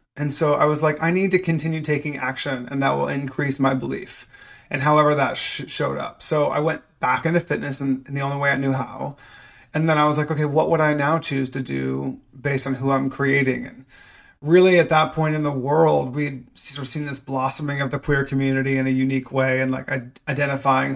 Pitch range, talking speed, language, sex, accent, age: 135-155 Hz, 220 wpm, English, male, American, 30-49